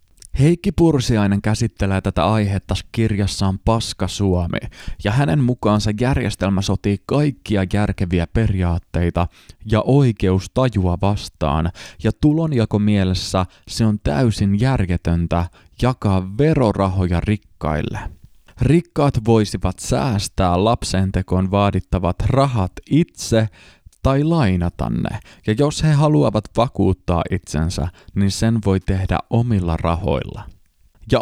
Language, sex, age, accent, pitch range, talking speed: Finnish, male, 20-39, native, 90-115 Hz, 105 wpm